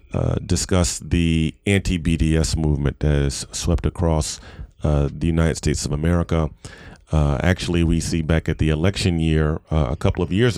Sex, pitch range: male, 80-90 Hz